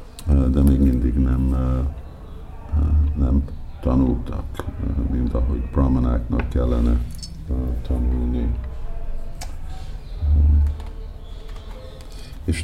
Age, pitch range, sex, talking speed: 50-69, 65-75 Hz, male, 55 wpm